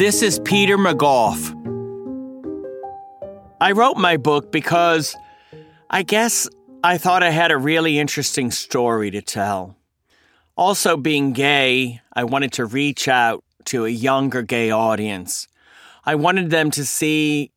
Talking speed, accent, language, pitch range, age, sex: 135 wpm, American, English, 120-170 Hz, 40-59, male